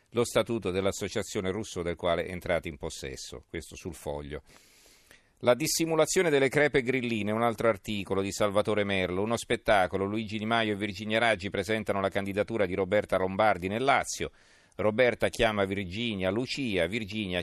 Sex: male